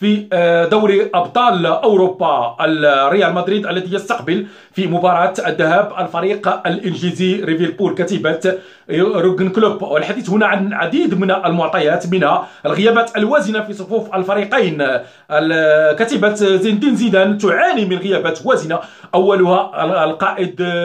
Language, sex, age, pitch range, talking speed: Arabic, male, 40-59, 170-205 Hz, 110 wpm